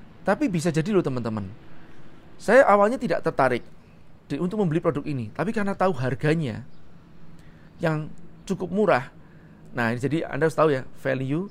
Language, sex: Indonesian, male